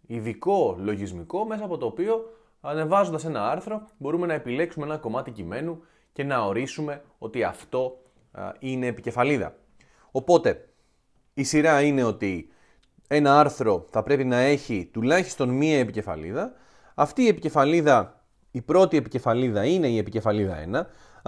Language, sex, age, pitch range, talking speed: Greek, male, 20-39, 110-150 Hz, 135 wpm